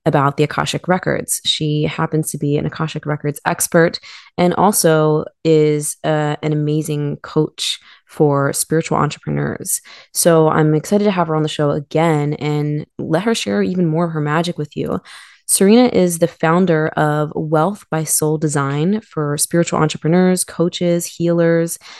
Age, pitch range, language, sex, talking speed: 20-39, 150-175 Hz, English, female, 155 wpm